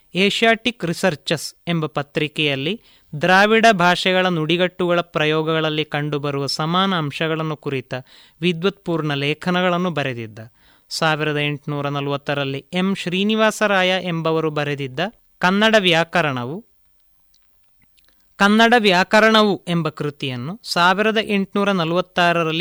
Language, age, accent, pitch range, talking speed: Kannada, 30-49, native, 150-185 Hz, 80 wpm